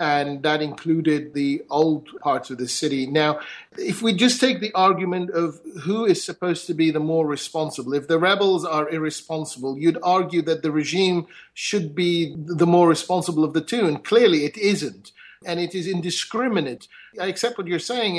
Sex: male